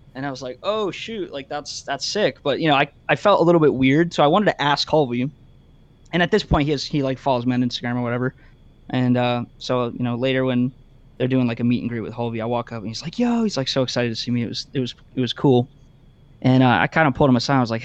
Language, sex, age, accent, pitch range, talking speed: English, male, 20-39, American, 120-145 Hz, 295 wpm